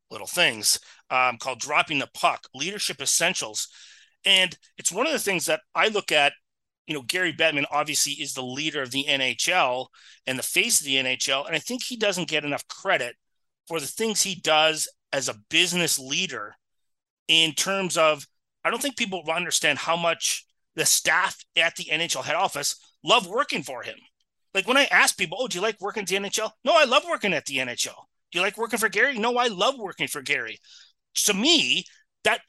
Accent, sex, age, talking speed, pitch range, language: American, male, 30-49, 200 wpm, 140-200 Hz, English